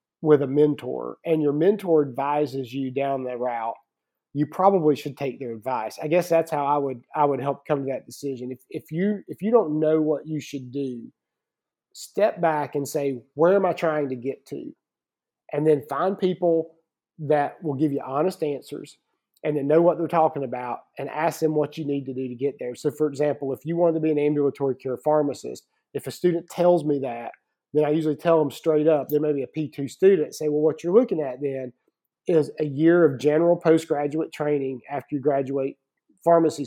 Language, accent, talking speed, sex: English, American, 210 wpm, male